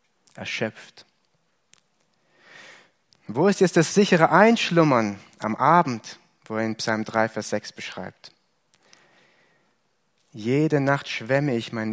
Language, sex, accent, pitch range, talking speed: German, male, German, 115-155 Hz, 110 wpm